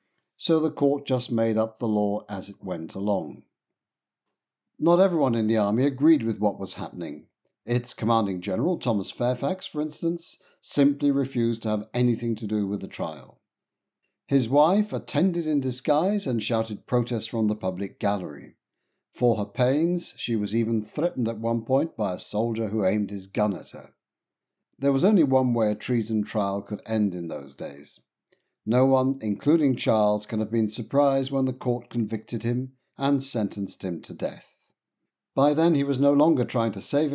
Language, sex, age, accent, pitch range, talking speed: English, male, 60-79, British, 105-140 Hz, 180 wpm